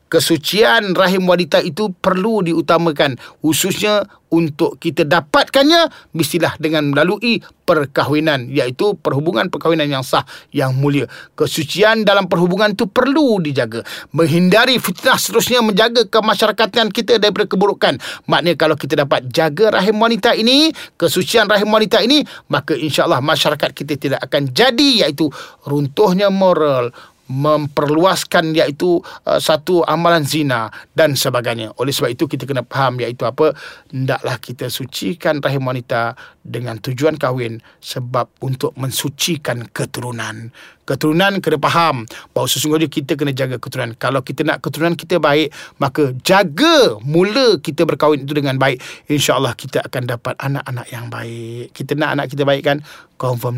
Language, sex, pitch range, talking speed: Malay, male, 135-205 Hz, 140 wpm